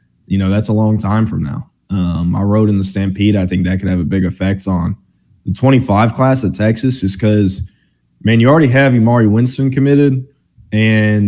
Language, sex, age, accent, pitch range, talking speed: English, male, 20-39, American, 95-110 Hz, 200 wpm